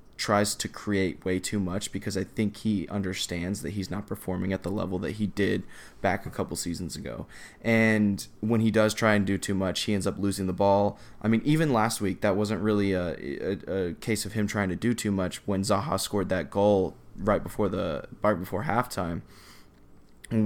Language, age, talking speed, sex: English, 20-39, 210 wpm, male